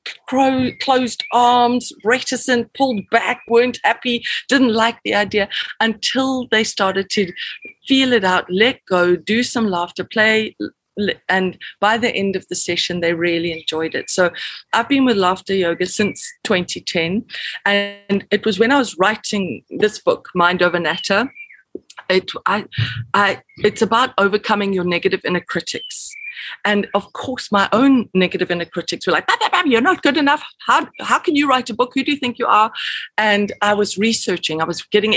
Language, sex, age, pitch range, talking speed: English, female, 30-49, 185-240 Hz, 170 wpm